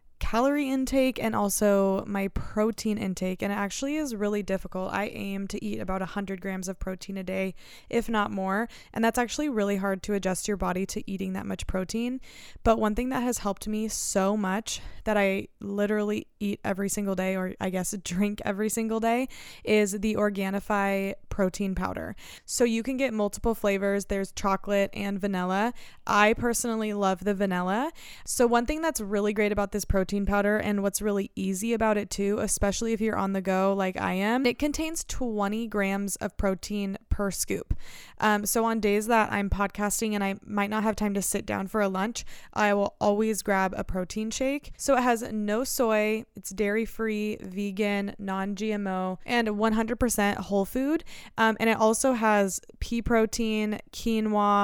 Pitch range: 195-225 Hz